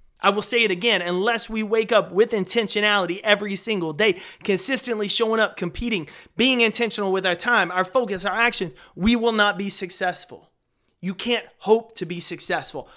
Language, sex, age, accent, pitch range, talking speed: English, male, 30-49, American, 160-205 Hz, 175 wpm